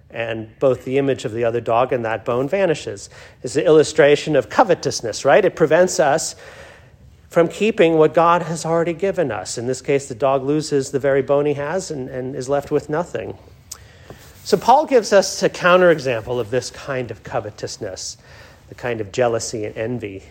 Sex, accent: male, American